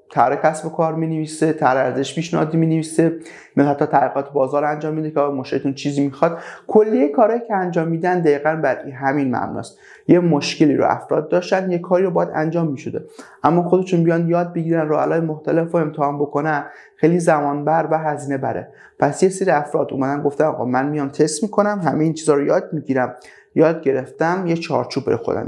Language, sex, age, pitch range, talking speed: Persian, male, 30-49, 140-180 Hz, 185 wpm